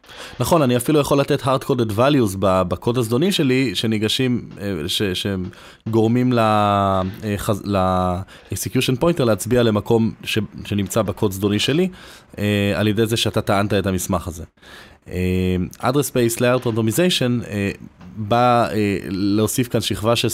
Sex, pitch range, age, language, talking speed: male, 95-115 Hz, 20-39, Hebrew, 125 wpm